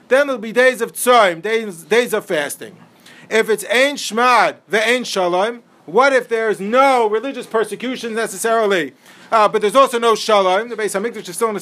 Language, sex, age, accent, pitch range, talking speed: English, male, 40-59, American, 220-275 Hz, 195 wpm